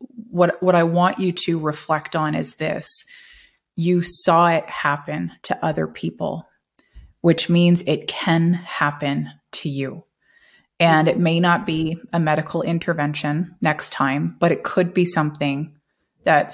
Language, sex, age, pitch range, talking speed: English, female, 30-49, 155-180 Hz, 145 wpm